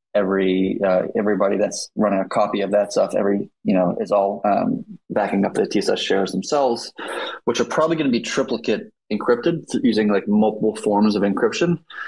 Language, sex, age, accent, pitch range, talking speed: English, male, 20-39, American, 100-120 Hz, 180 wpm